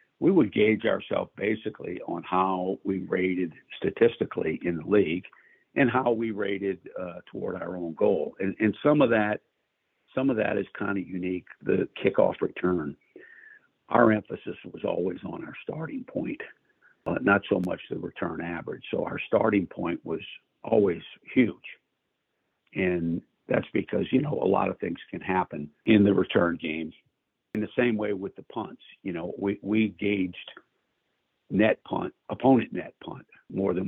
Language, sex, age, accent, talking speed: English, male, 50-69, American, 165 wpm